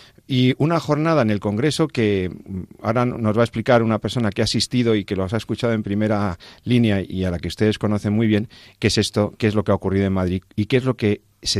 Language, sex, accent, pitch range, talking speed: Spanish, male, Spanish, 100-120 Hz, 260 wpm